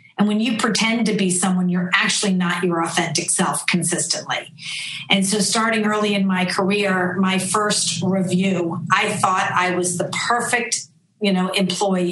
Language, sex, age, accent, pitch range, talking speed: English, female, 40-59, American, 180-205 Hz, 165 wpm